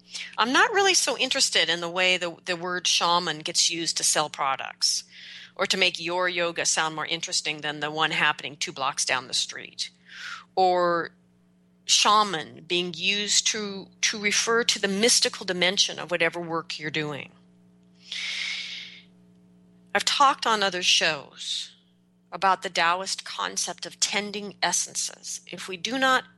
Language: English